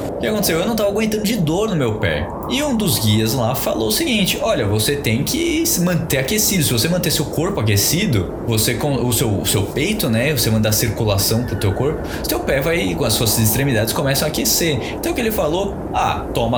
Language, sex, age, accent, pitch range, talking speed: Portuguese, male, 20-39, Brazilian, 100-155 Hz, 230 wpm